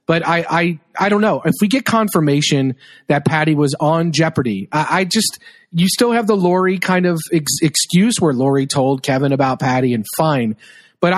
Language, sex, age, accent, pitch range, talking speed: English, male, 40-59, American, 145-180 Hz, 195 wpm